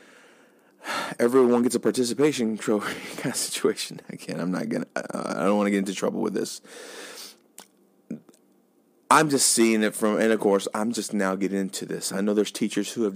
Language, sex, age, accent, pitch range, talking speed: English, male, 20-39, American, 100-115 Hz, 195 wpm